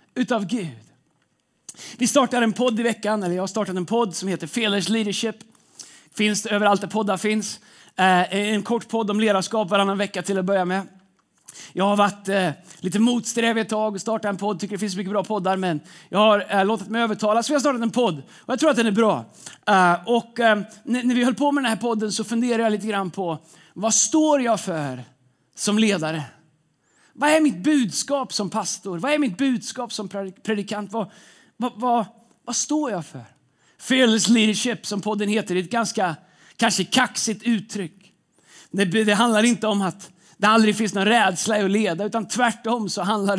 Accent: native